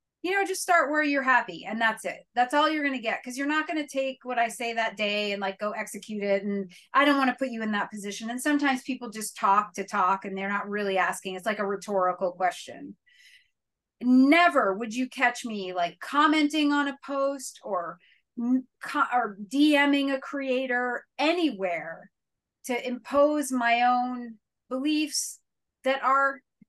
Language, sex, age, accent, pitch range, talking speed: English, female, 30-49, American, 205-270 Hz, 185 wpm